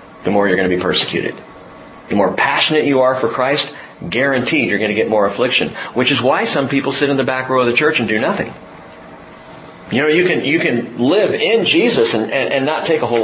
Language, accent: English, American